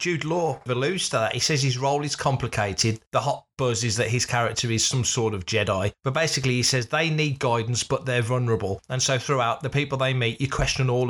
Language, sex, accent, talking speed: English, male, British, 230 wpm